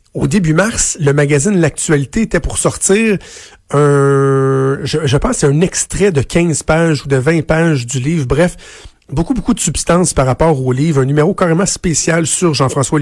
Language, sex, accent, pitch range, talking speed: French, male, Canadian, 130-160 Hz, 185 wpm